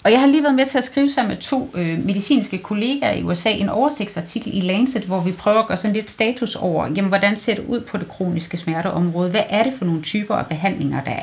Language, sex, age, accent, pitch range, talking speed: Danish, female, 30-49, native, 175-240 Hz, 245 wpm